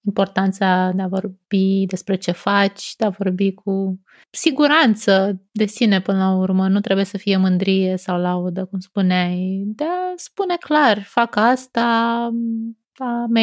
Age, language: 20-39, Romanian